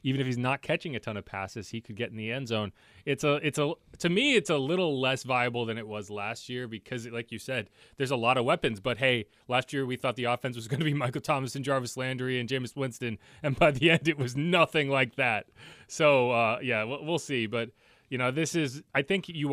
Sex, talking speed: male, 255 wpm